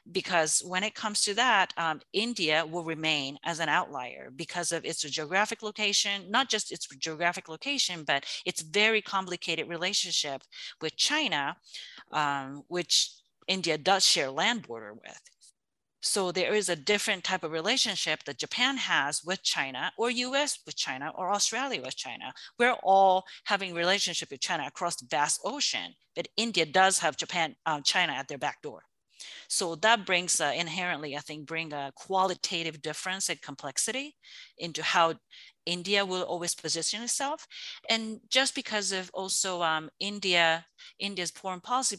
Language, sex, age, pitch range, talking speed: English, female, 40-59, 160-215 Hz, 155 wpm